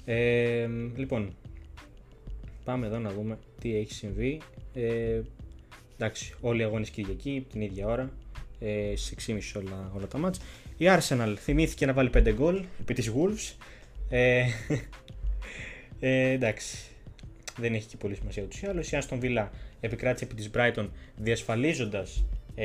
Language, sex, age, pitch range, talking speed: Greek, male, 20-39, 110-130 Hz, 130 wpm